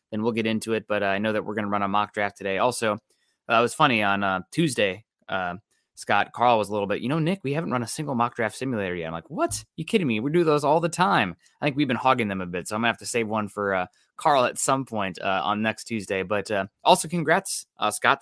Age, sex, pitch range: 20-39, male, 100-125 Hz